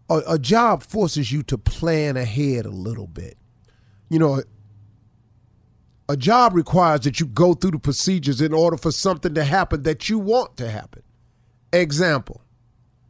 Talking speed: 150 wpm